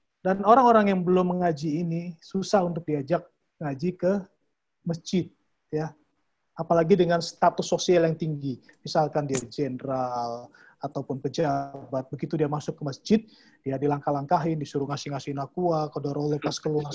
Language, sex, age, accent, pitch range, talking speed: Indonesian, male, 30-49, native, 150-180 Hz, 135 wpm